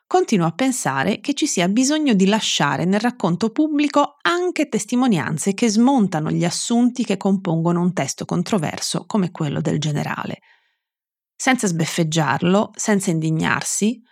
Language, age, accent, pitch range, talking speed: Italian, 30-49, native, 155-220 Hz, 130 wpm